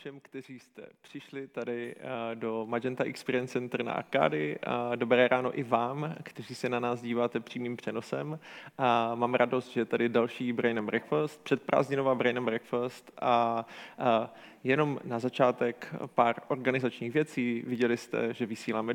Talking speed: 145 wpm